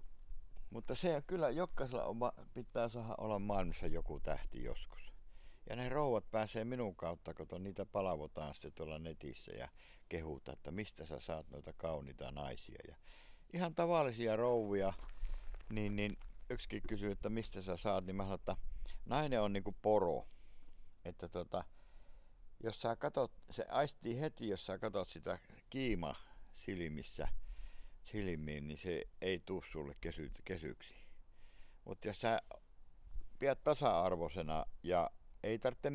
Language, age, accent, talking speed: Finnish, 60-79, native, 140 wpm